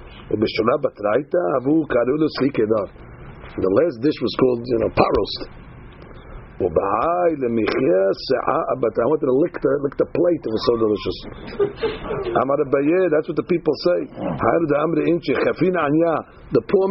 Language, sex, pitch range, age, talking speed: English, male, 125-175 Hz, 60-79, 95 wpm